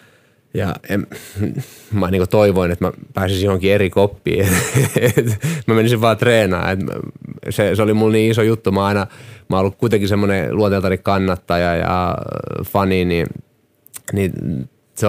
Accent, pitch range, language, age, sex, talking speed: native, 95-110 Hz, Finnish, 30-49, male, 130 wpm